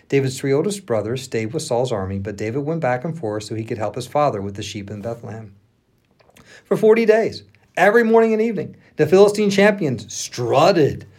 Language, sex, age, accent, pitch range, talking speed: English, male, 50-69, American, 115-160 Hz, 195 wpm